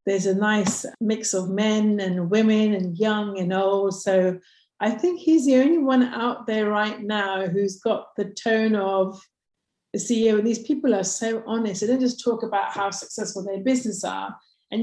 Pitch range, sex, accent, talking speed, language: 200-240 Hz, female, British, 190 wpm, English